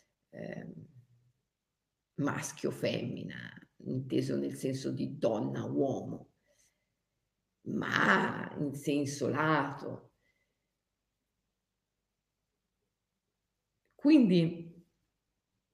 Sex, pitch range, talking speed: female, 135-180 Hz, 40 wpm